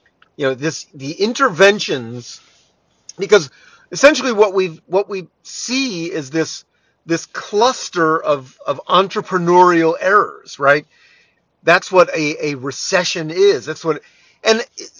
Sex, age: male, 40-59